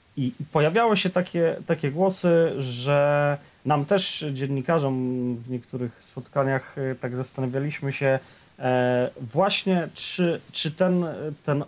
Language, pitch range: Polish, 125-145 Hz